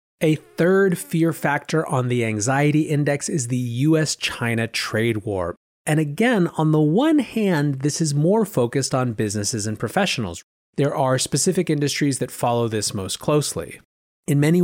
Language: English